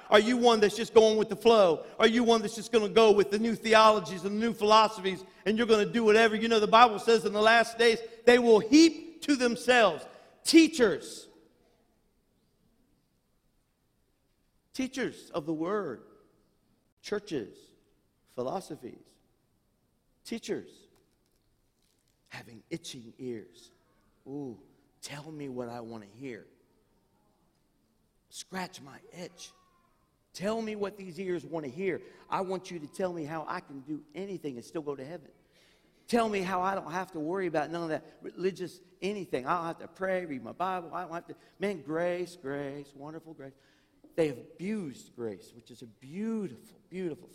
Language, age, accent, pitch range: English, 50-69, American, 160-215 Hz